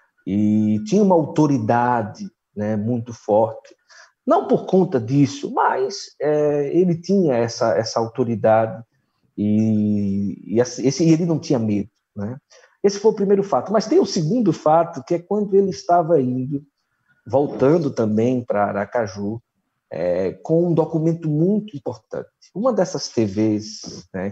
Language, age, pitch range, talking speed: Portuguese, 50-69, 115-180 Hz, 140 wpm